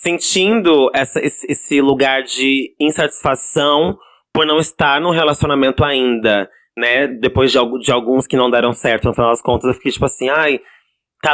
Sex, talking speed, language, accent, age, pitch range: male, 170 wpm, Portuguese, Brazilian, 20-39, 125-155 Hz